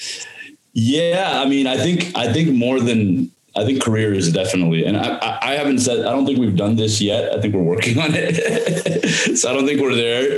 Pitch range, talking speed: 95-120 Hz, 225 wpm